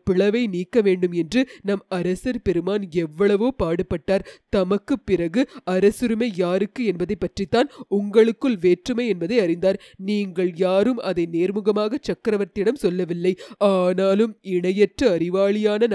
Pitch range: 185-215 Hz